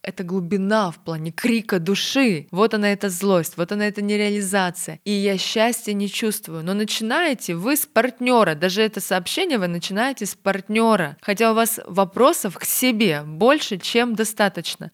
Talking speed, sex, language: 160 wpm, female, Russian